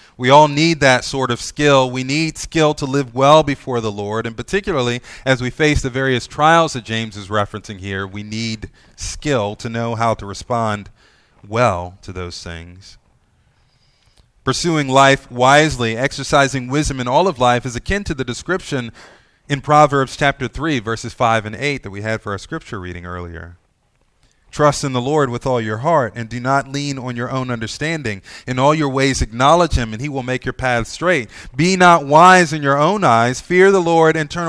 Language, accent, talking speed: English, American, 195 wpm